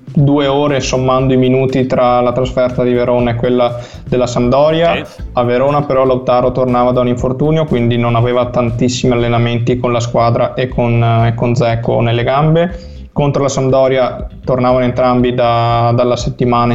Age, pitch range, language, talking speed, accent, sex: 20-39, 125-135 Hz, Italian, 160 wpm, native, male